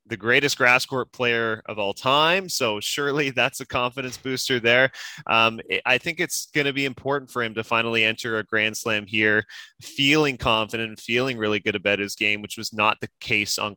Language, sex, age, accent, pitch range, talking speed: English, male, 20-39, American, 105-130 Hz, 205 wpm